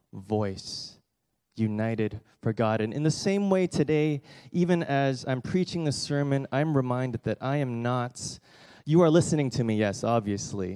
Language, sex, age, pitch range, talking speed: English, male, 20-39, 105-135 Hz, 160 wpm